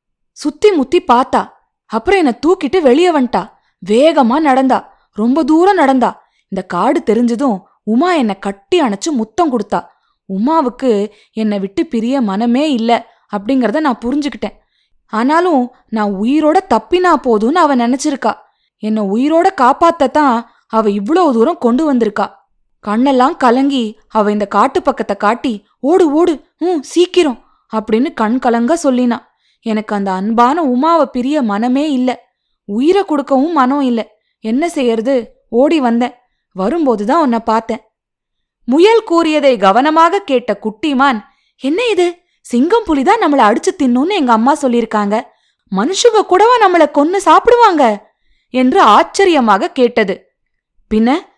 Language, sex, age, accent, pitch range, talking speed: Tamil, female, 20-39, native, 220-315 Hz, 120 wpm